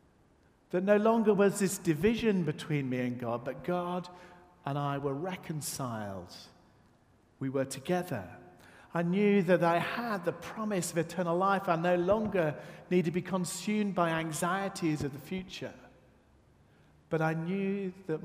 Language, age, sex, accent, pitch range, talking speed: English, 50-69, male, British, 140-185 Hz, 150 wpm